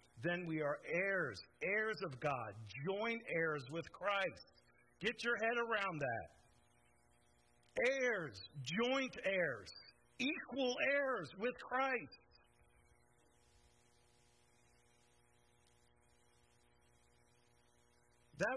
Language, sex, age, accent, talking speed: English, male, 50-69, American, 80 wpm